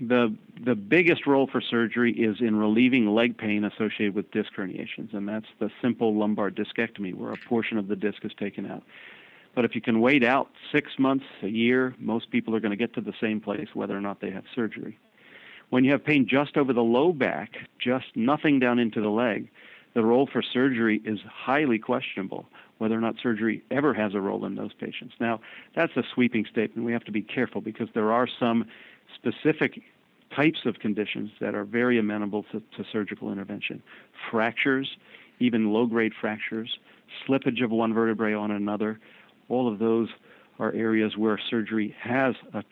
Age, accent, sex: 50-69, American, male